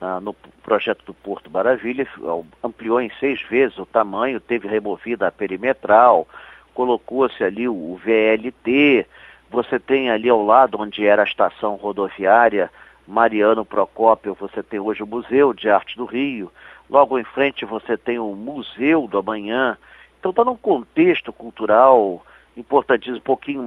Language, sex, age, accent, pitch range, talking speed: Portuguese, male, 50-69, Brazilian, 110-140 Hz, 145 wpm